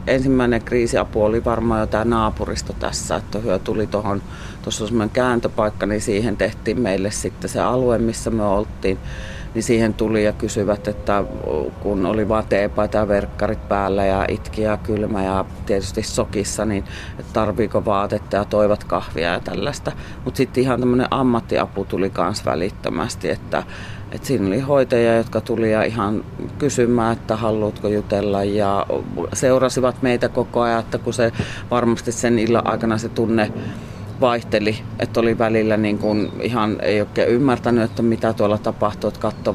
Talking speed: 150 wpm